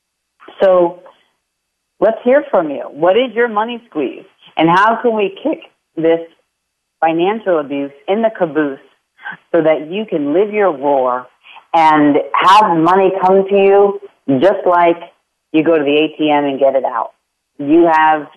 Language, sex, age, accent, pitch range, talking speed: English, female, 40-59, American, 135-180 Hz, 155 wpm